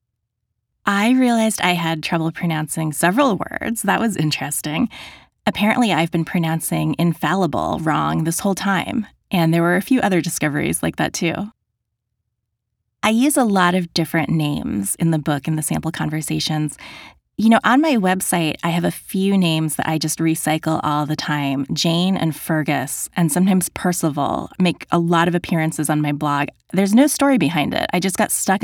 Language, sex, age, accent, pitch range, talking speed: English, female, 20-39, American, 150-190 Hz, 175 wpm